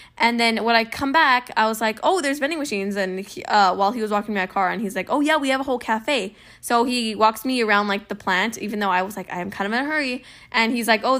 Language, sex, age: English, female, 10-29